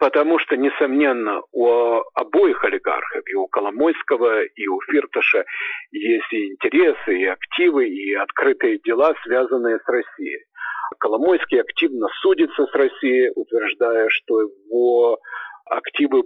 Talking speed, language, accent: 120 wpm, Russian, native